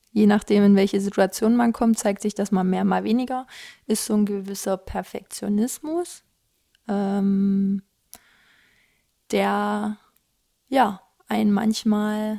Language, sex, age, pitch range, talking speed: German, female, 20-39, 195-220 Hz, 115 wpm